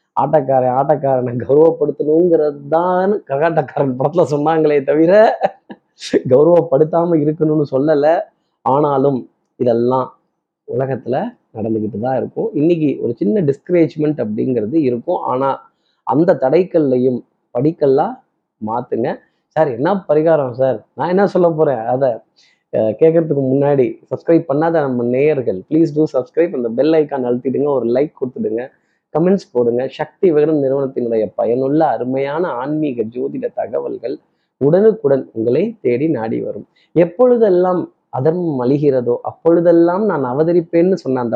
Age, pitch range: 20-39, 130-165 Hz